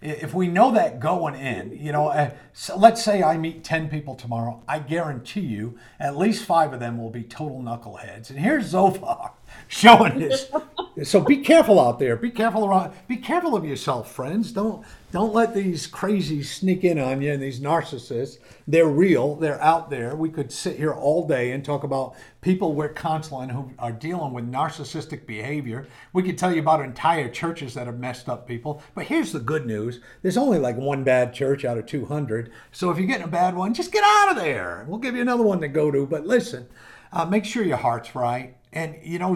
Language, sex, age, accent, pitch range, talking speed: English, male, 50-69, American, 130-185 Hz, 210 wpm